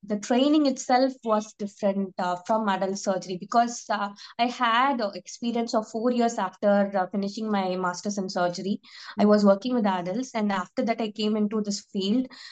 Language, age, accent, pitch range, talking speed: English, 20-39, Indian, 200-235 Hz, 175 wpm